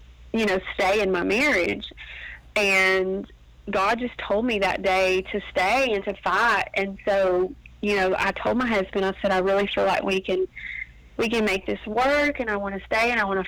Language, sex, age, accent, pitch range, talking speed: English, female, 30-49, American, 190-235 Hz, 215 wpm